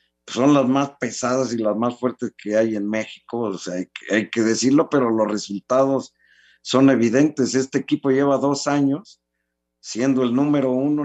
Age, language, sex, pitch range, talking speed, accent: 50-69, Spanish, male, 105-135 Hz, 175 wpm, Mexican